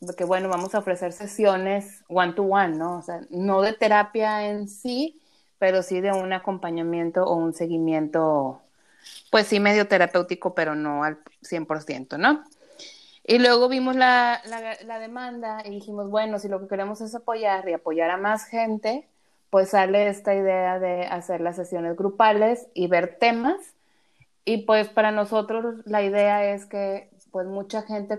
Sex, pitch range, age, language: female, 185-225 Hz, 30-49, Spanish